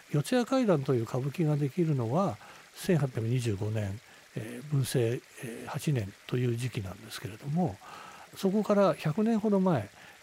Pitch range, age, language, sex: 125-180 Hz, 60-79, Japanese, male